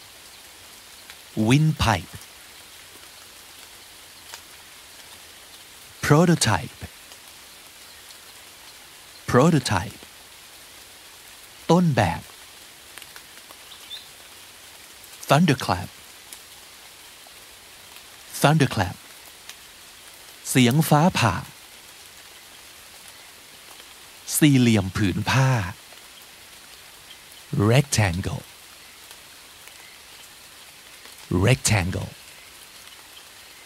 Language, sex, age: Thai, male, 60-79